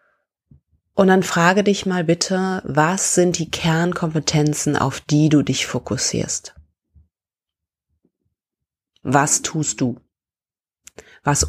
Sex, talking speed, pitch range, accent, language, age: female, 100 wpm, 130-175 Hz, German, German, 30-49